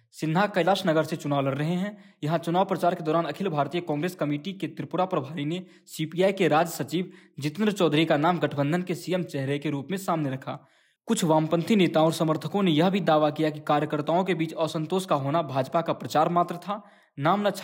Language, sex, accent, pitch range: English, male, Indian, 150-180 Hz